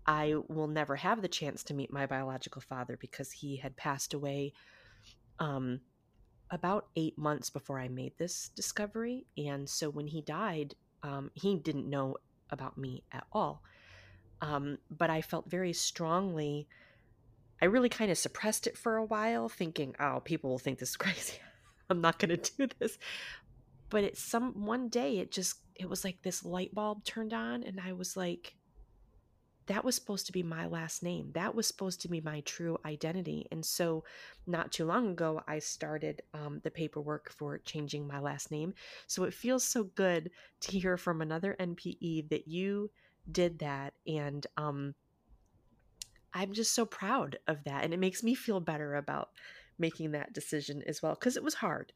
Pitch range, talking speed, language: 145-185 Hz, 180 wpm, English